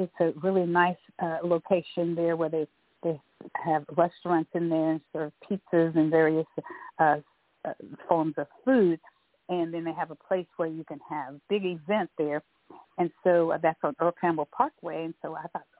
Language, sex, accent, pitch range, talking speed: English, female, American, 160-185 Hz, 180 wpm